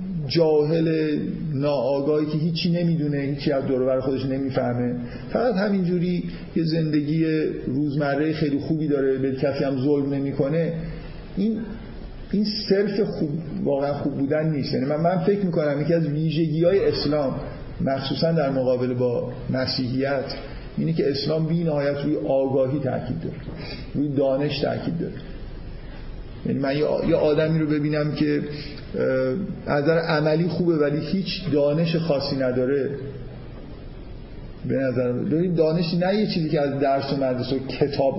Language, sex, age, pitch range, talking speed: Persian, male, 50-69, 135-165 Hz, 130 wpm